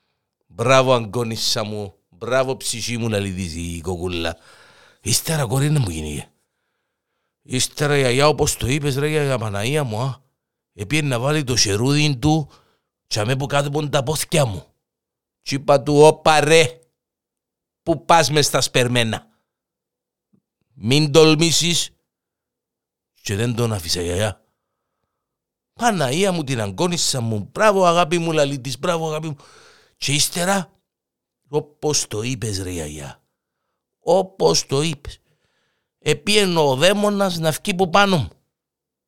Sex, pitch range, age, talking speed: male, 125-170 Hz, 50-69, 125 wpm